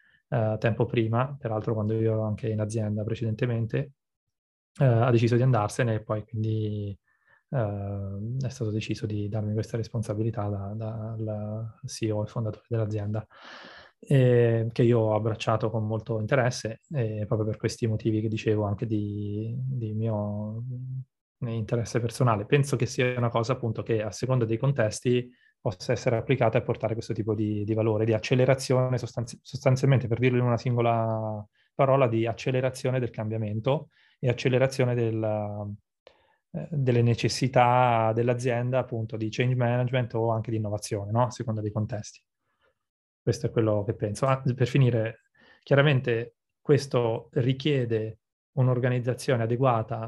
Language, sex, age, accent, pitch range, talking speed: Italian, male, 20-39, native, 110-125 Hz, 145 wpm